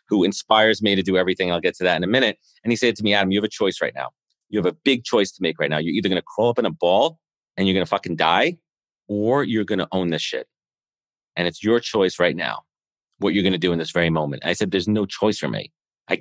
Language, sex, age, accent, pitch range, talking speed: English, male, 40-59, American, 95-120 Hz, 295 wpm